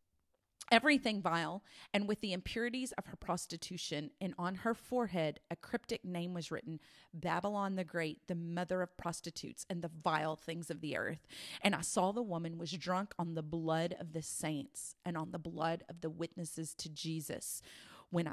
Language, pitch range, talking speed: English, 160-185 Hz, 180 wpm